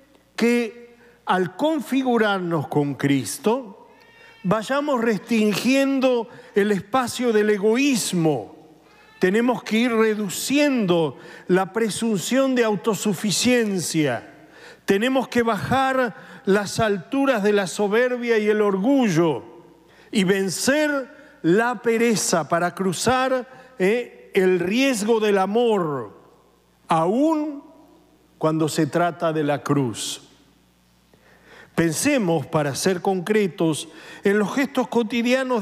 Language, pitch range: Spanish, 180-255 Hz